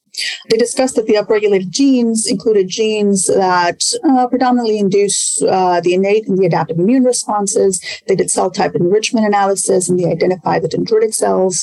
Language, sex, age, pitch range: English, female, 30-49, 180-220 Hz